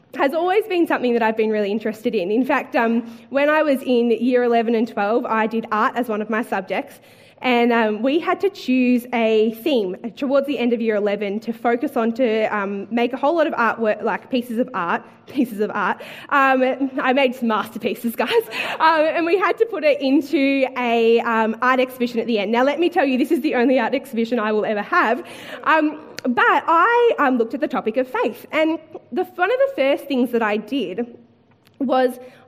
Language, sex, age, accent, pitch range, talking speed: English, female, 20-39, Australian, 230-305 Hz, 210 wpm